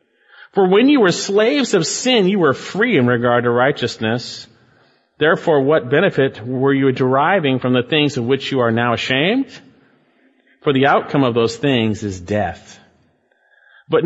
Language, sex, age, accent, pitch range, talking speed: English, male, 40-59, American, 125-185 Hz, 160 wpm